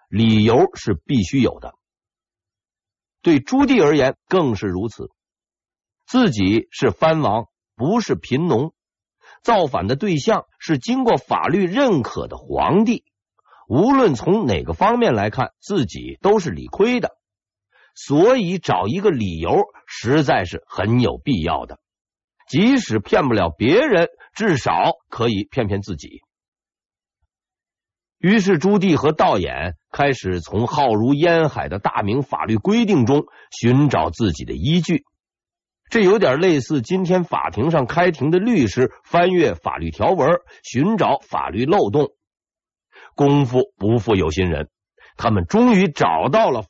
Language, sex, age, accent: Chinese, male, 50-69, native